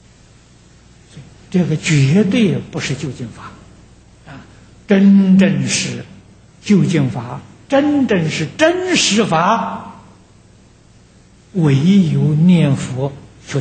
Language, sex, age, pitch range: Chinese, male, 60-79, 130-200 Hz